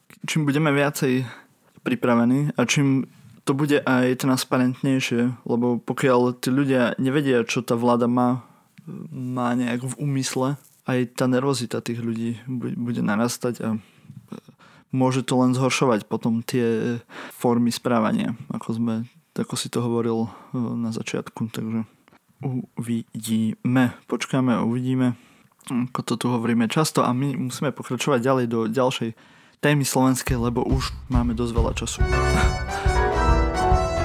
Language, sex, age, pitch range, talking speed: Slovak, male, 20-39, 120-140 Hz, 125 wpm